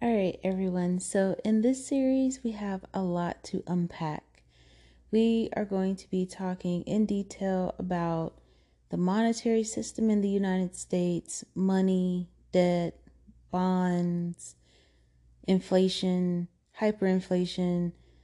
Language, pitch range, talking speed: English, 170-205 Hz, 110 wpm